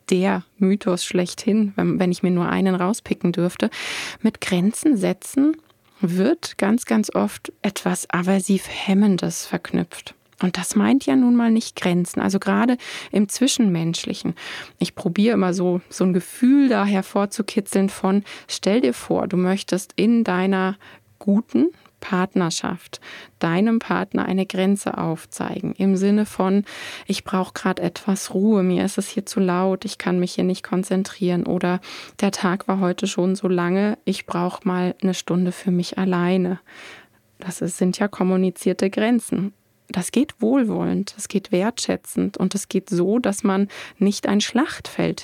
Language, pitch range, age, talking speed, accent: German, 180-210 Hz, 20-39, 150 wpm, German